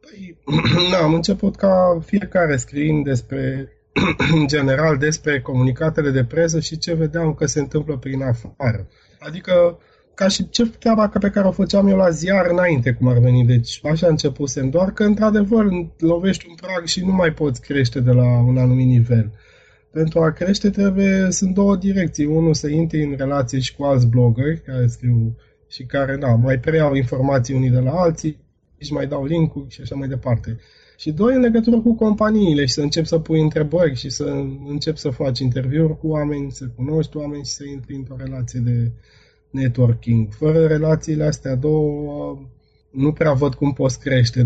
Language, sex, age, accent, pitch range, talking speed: Romanian, male, 20-39, native, 130-165 Hz, 180 wpm